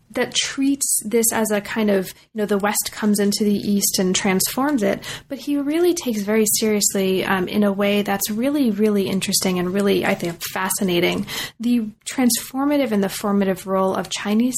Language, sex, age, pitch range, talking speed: English, female, 30-49, 190-225 Hz, 185 wpm